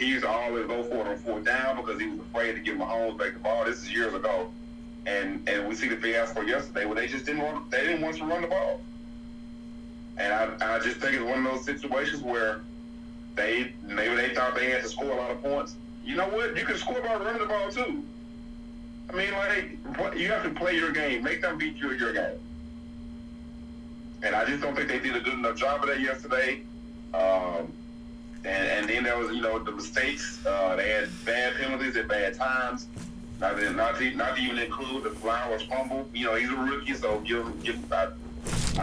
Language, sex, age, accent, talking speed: English, male, 30-49, American, 225 wpm